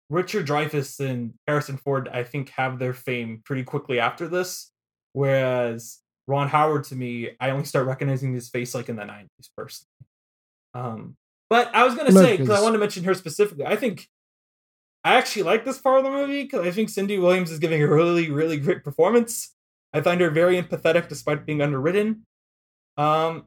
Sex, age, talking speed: male, 20-39, 190 wpm